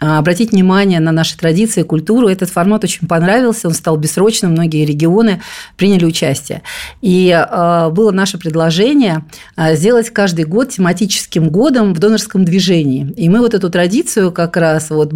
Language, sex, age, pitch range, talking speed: Russian, female, 40-59, 165-210 Hz, 150 wpm